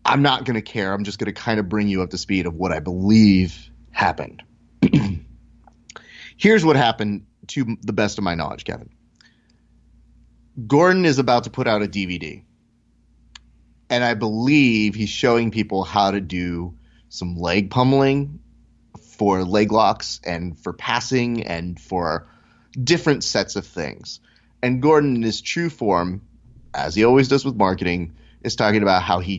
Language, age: English, 30-49